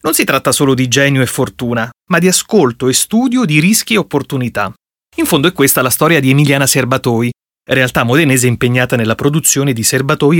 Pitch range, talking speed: 125-175 Hz, 190 wpm